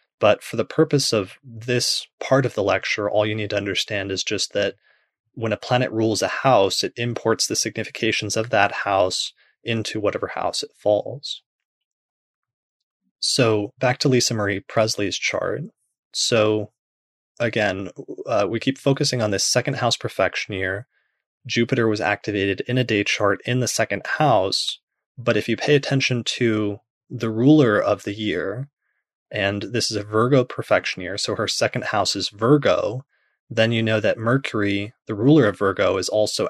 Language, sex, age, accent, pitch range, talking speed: English, male, 20-39, American, 105-120 Hz, 165 wpm